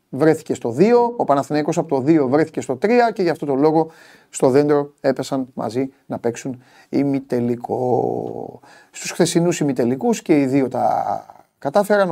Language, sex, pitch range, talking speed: Greek, male, 125-160 Hz, 155 wpm